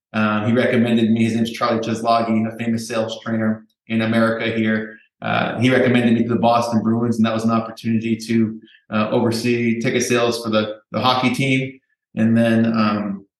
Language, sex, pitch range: English, male, 110-125 Hz